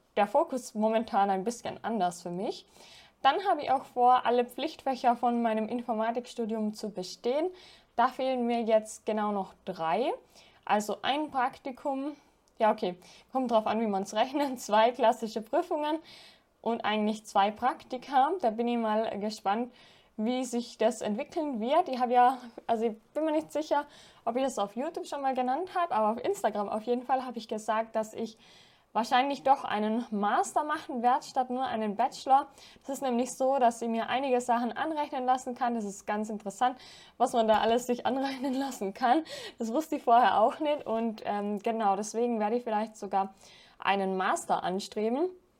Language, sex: German, female